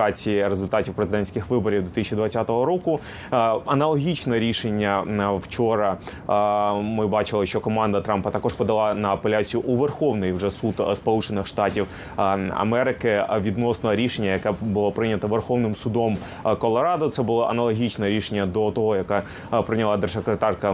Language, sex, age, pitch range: Ukrainian, male, 20-39, 105-120 Hz